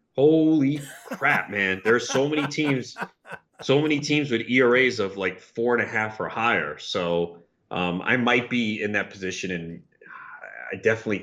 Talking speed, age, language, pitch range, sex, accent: 170 wpm, 30-49, English, 95-130 Hz, male, American